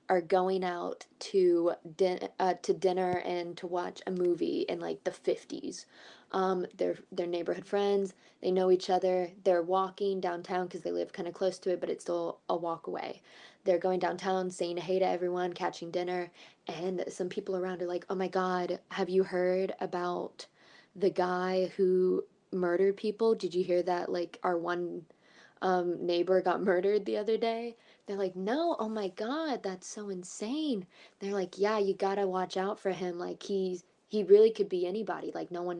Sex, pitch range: female, 175-195 Hz